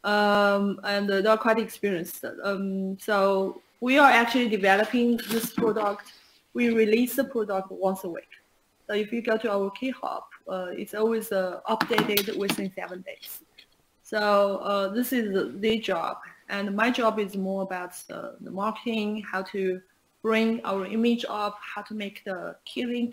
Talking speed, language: 165 wpm, English